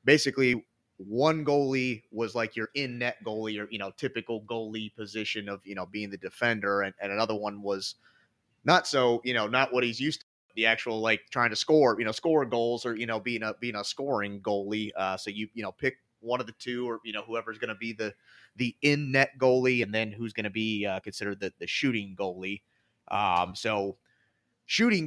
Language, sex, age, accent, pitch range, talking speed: English, male, 30-49, American, 105-130 Hz, 210 wpm